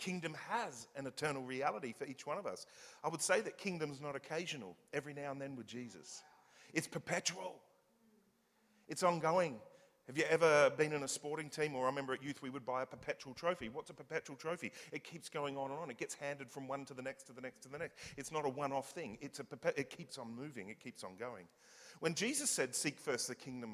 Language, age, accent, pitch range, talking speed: English, 40-59, Australian, 140-190 Hz, 235 wpm